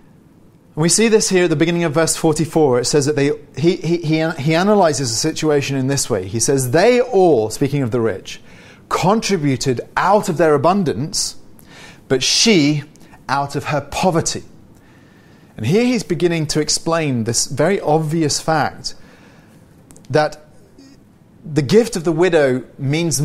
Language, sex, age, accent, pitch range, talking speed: English, male, 30-49, British, 130-165 Hz, 150 wpm